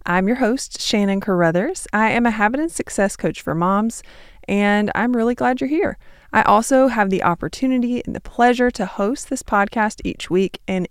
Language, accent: English, American